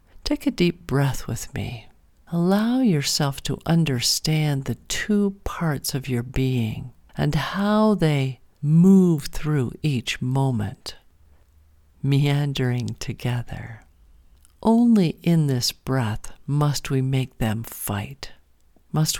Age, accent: 50-69, American